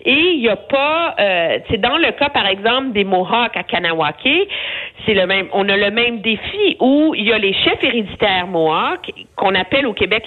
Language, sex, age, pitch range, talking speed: French, female, 50-69, 190-285 Hz, 210 wpm